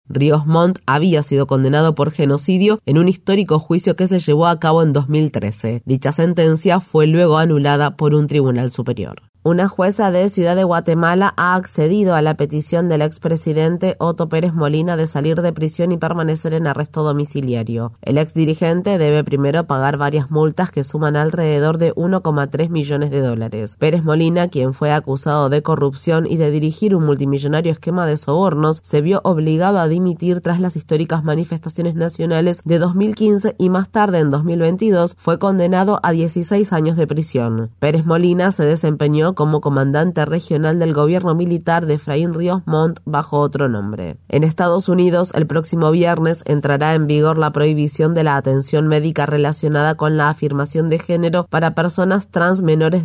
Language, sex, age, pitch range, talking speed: Spanish, female, 30-49, 150-170 Hz, 170 wpm